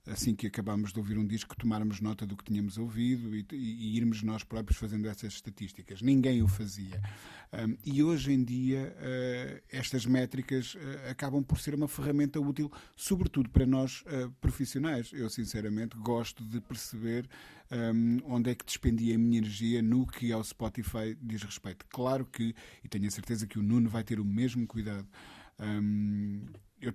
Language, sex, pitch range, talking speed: Portuguese, male, 105-125 Hz, 175 wpm